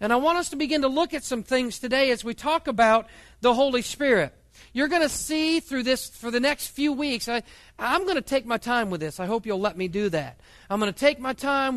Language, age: English, 40-59